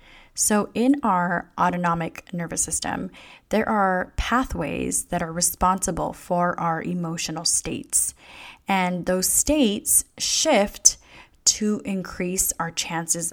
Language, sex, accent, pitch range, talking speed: English, female, American, 175-200 Hz, 110 wpm